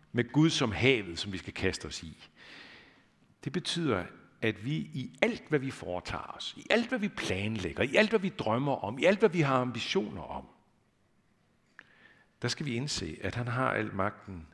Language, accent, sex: Danish, native, male